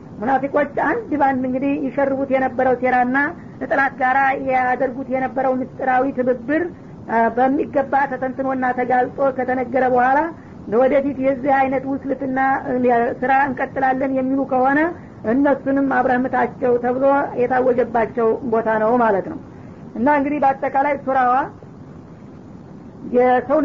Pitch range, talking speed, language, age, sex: 255-275 Hz, 105 wpm, Amharic, 50-69, female